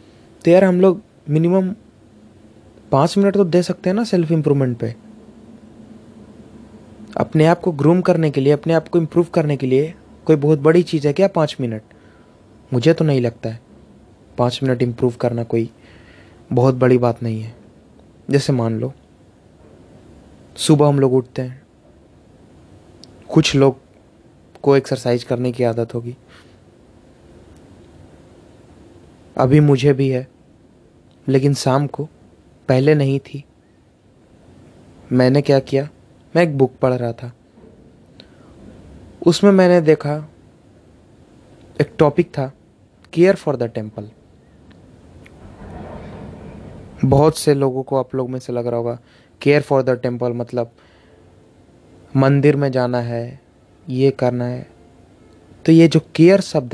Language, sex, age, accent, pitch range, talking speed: Hindi, male, 20-39, native, 115-150 Hz, 130 wpm